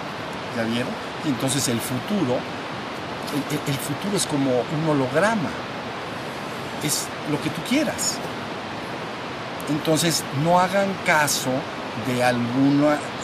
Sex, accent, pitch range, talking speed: male, Mexican, 130-180 Hz, 105 wpm